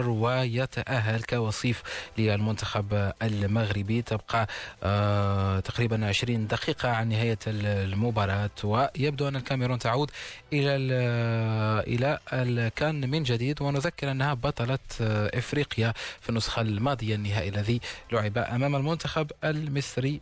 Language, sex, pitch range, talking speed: Arabic, male, 110-135 Hz, 100 wpm